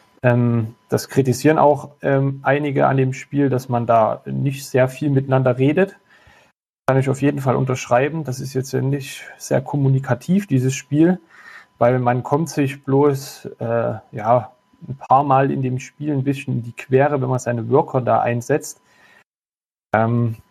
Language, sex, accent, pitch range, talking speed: German, male, German, 125-145 Hz, 160 wpm